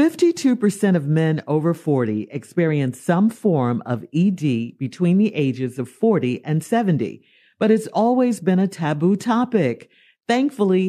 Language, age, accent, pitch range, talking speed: English, 50-69, American, 155-230 Hz, 130 wpm